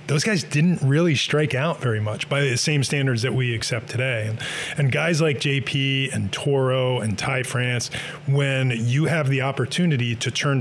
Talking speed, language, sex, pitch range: 185 wpm, English, male, 120-150 Hz